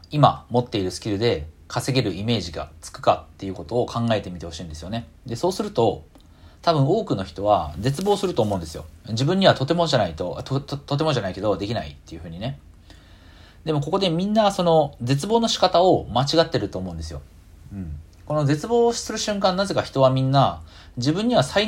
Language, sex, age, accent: Japanese, male, 40-59, native